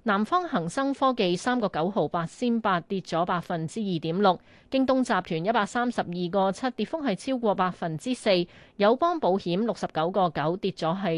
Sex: female